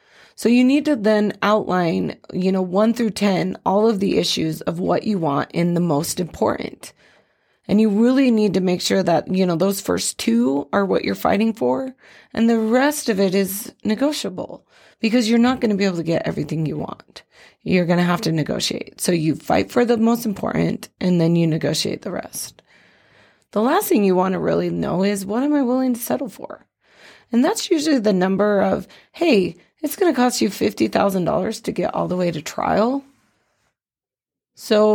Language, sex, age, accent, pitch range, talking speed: English, female, 30-49, American, 175-225 Hz, 200 wpm